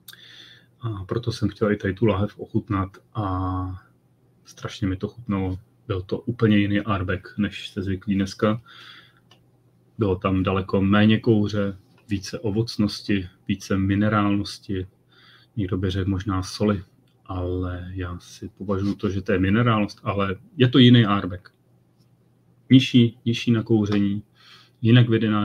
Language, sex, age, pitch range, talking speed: Czech, male, 30-49, 95-110 Hz, 130 wpm